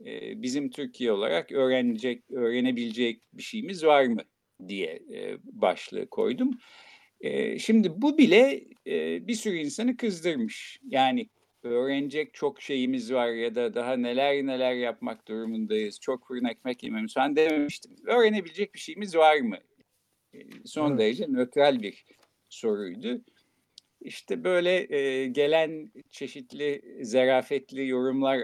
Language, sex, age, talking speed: Turkish, male, 50-69, 115 wpm